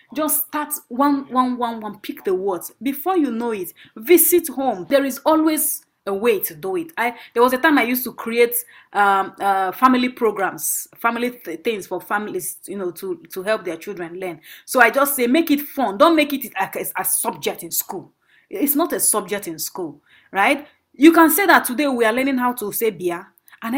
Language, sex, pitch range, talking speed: English, female, 220-300 Hz, 215 wpm